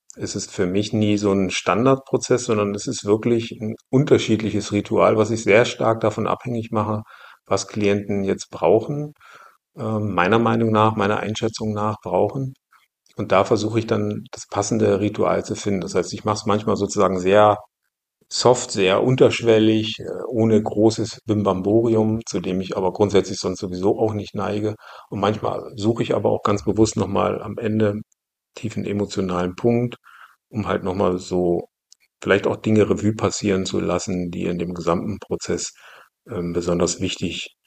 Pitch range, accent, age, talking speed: 95-110 Hz, German, 50-69, 160 wpm